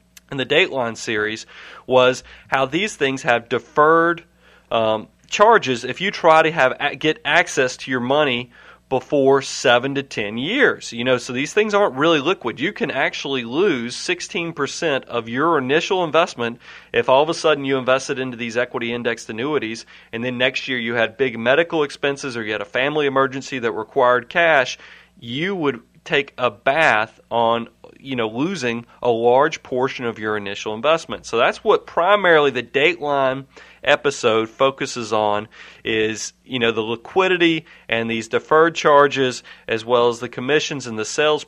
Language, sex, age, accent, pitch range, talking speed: English, male, 30-49, American, 120-150 Hz, 170 wpm